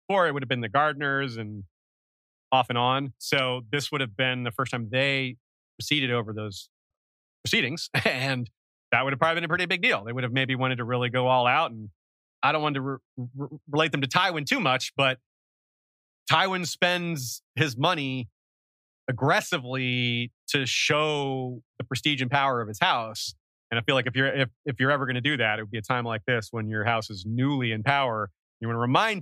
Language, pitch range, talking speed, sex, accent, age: English, 120-160 Hz, 210 wpm, male, American, 30-49